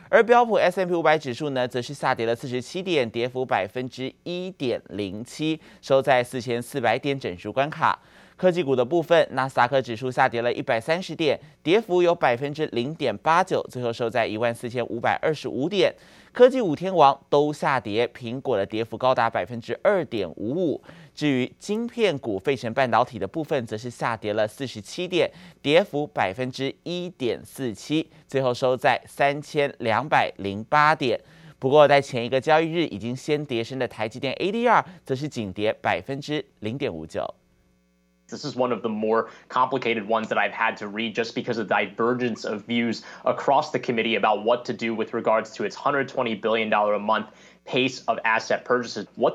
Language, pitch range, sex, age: Chinese, 115-150 Hz, male, 20-39